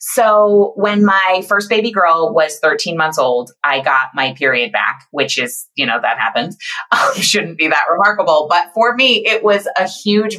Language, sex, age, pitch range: English, female, 20-39, 145-230 Hz